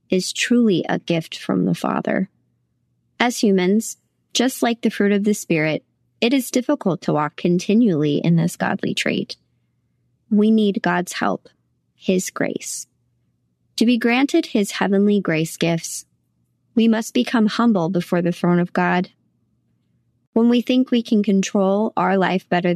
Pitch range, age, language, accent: 170-220 Hz, 20-39, English, American